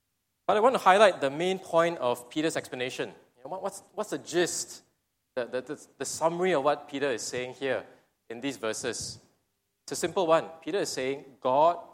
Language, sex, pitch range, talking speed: English, male, 135-180 Hz, 180 wpm